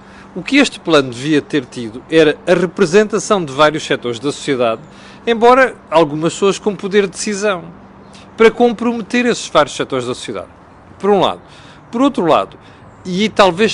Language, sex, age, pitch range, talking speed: Portuguese, male, 40-59, 150-210 Hz, 160 wpm